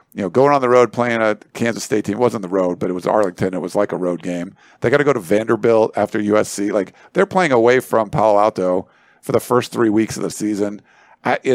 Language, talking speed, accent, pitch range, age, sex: English, 255 wpm, American, 105-145 Hz, 50-69, male